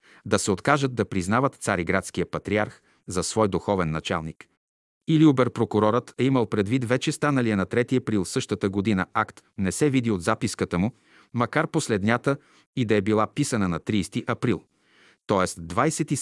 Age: 40-59